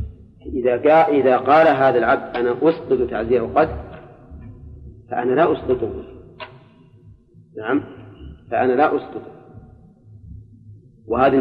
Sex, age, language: male, 40-59, Arabic